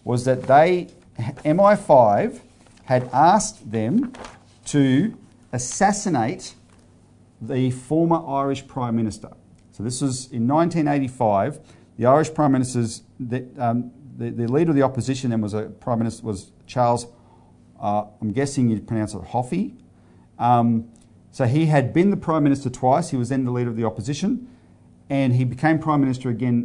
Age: 40-59